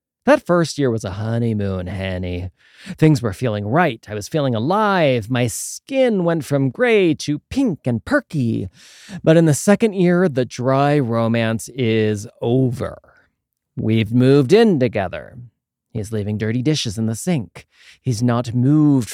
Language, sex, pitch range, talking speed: English, male, 110-145 Hz, 150 wpm